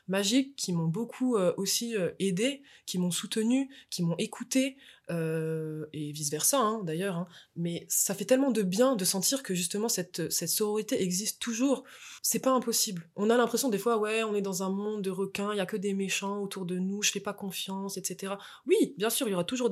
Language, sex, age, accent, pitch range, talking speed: French, female, 20-39, French, 170-210 Hz, 220 wpm